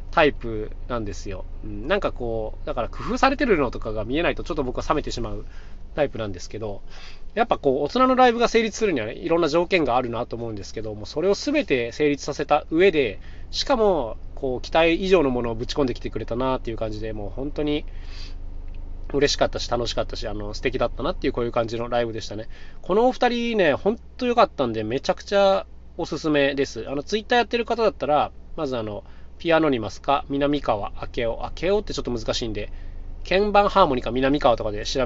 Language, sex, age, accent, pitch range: Japanese, male, 20-39, native, 110-180 Hz